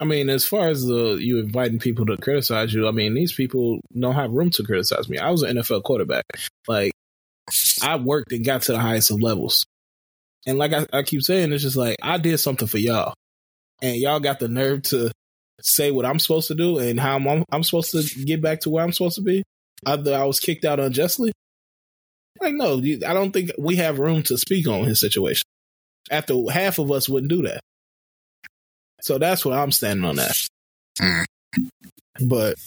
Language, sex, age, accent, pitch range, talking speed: English, male, 20-39, American, 115-150 Hz, 200 wpm